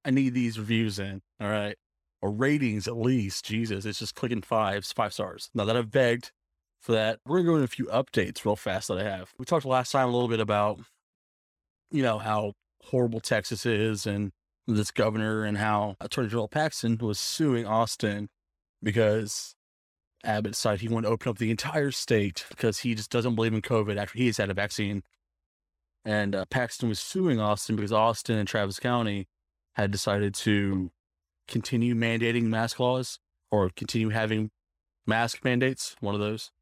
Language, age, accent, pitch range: English, 20-39, American, 100-120 Hz